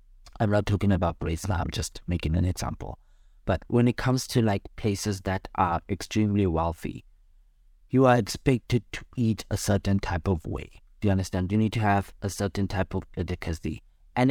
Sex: male